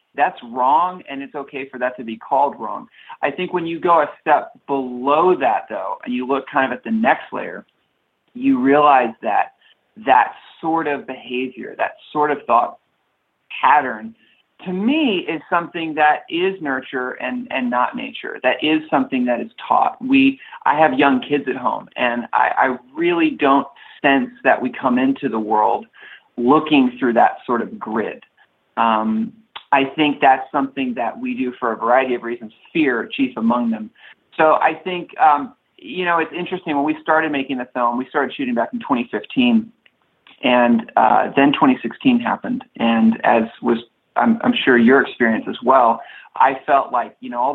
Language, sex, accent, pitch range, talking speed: English, male, American, 125-210 Hz, 180 wpm